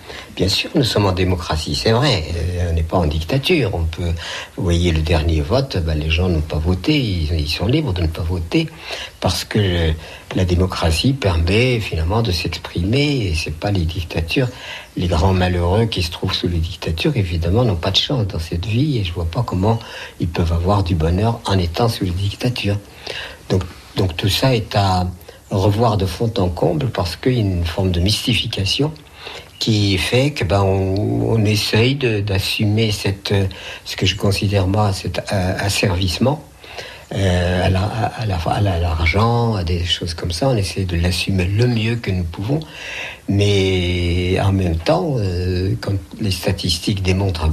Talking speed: 190 wpm